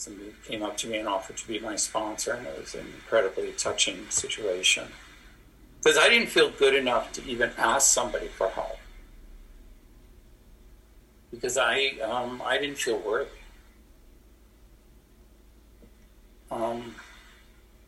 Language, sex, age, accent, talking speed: English, male, 60-79, American, 130 wpm